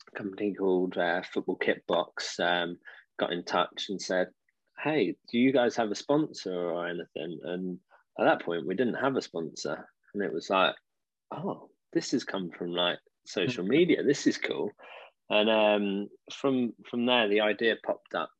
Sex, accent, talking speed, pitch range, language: male, British, 175 wpm, 90-105 Hz, English